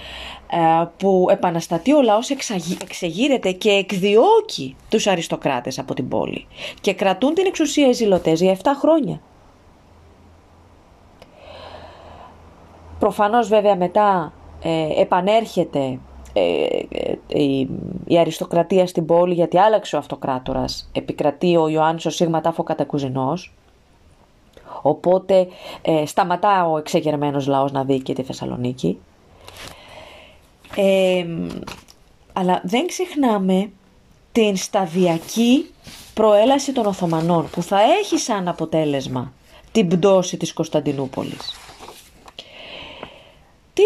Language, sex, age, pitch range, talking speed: Greek, female, 30-49, 145-220 Hz, 100 wpm